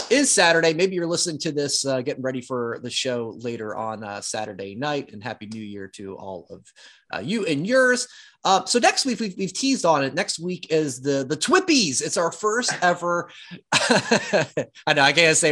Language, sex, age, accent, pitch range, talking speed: English, male, 30-49, American, 130-180 Hz, 205 wpm